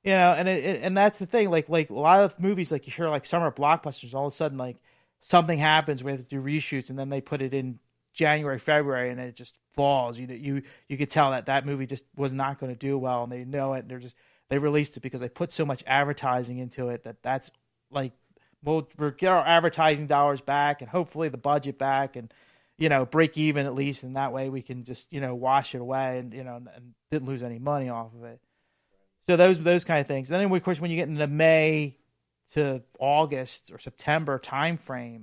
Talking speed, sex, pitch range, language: 250 wpm, male, 130-150 Hz, English